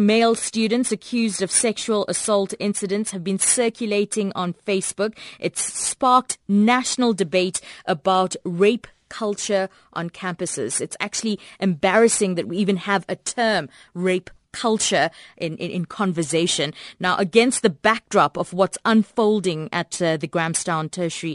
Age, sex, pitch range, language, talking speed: 20-39, female, 175-220 Hz, English, 140 wpm